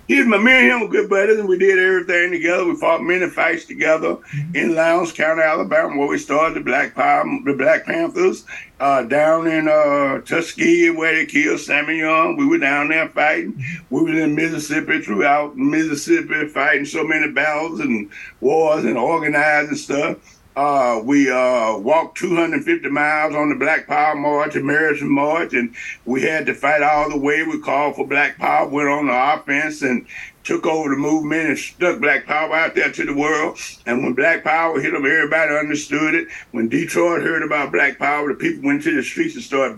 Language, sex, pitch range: English, male, 145-180 Hz